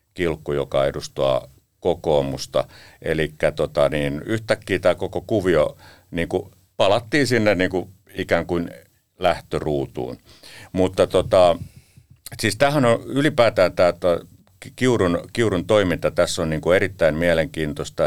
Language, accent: Finnish, native